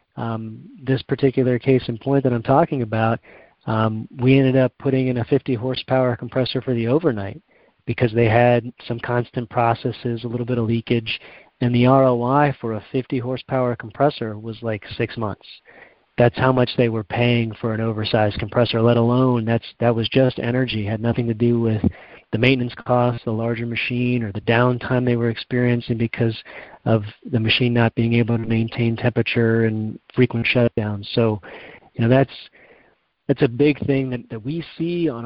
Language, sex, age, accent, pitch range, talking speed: English, male, 40-59, American, 115-130 Hz, 180 wpm